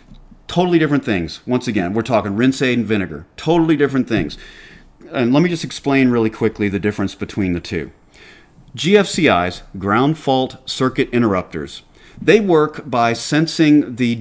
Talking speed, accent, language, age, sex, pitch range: 150 wpm, American, English, 40-59, male, 105-140 Hz